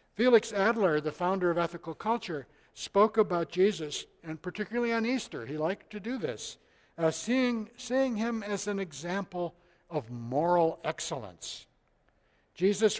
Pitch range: 140-190 Hz